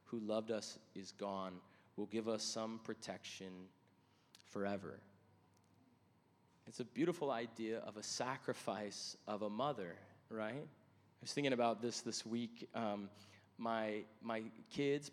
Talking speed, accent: 130 wpm, American